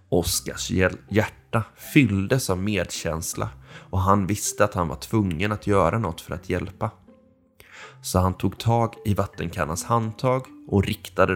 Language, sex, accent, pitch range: Swedish, male, native, 90-115 Hz